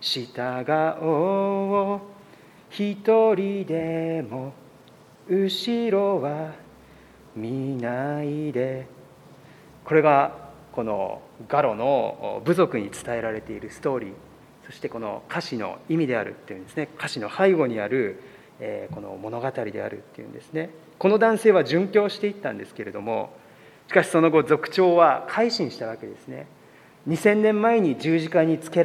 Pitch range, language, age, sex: 145-205 Hz, Japanese, 40-59, male